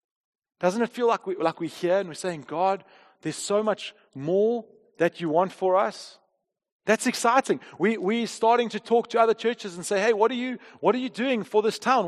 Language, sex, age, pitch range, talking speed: English, male, 30-49, 200-240 Hz, 220 wpm